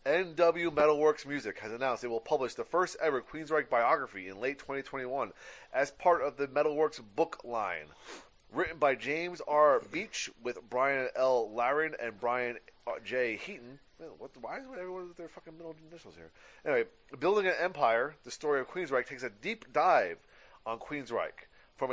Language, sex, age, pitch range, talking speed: English, male, 30-49, 120-160 Hz, 170 wpm